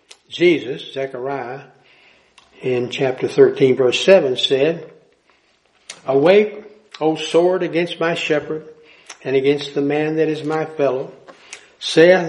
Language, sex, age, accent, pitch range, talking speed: English, male, 60-79, American, 135-210 Hz, 110 wpm